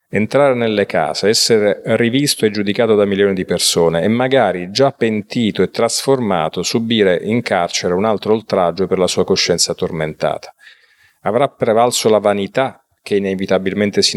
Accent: native